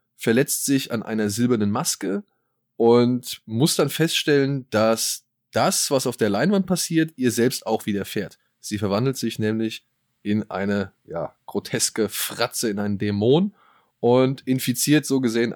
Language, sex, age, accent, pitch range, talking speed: German, male, 20-39, German, 105-130 Hz, 145 wpm